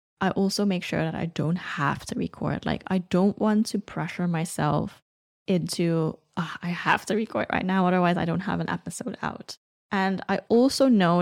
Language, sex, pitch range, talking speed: English, female, 175-220 Hz, 185 wpm